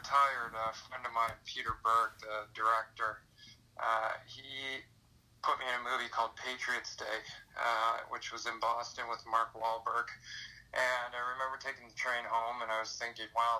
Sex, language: male, English